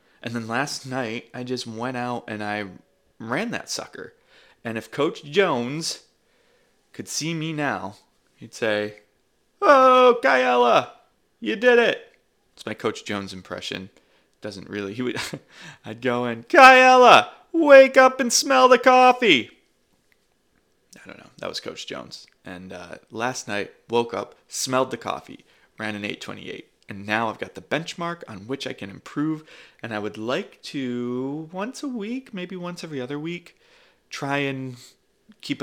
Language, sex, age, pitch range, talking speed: English, male, 30-49, 105-155 Hz, 155 wpm